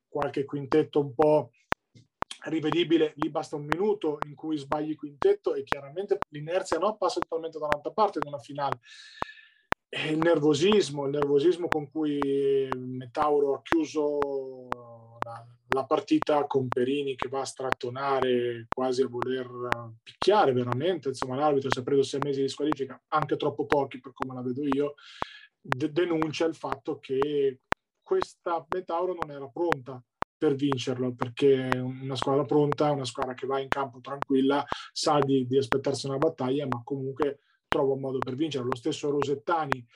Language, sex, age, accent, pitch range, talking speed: Italian, male, 30-49, native, 135-155 Hz, 160 wpm